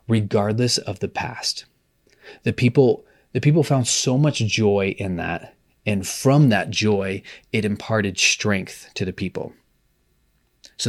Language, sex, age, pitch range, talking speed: English, male, 30-49, 95-115 Hz, 140 wpm